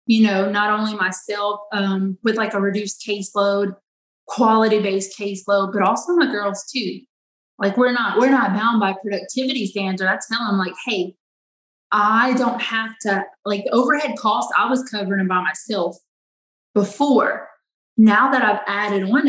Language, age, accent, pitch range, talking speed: English, 20-39, American, 195-235 Hz, 160 wpm